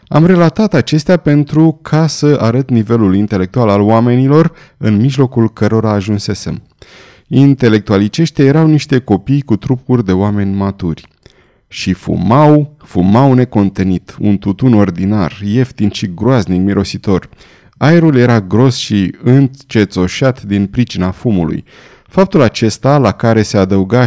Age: 30-49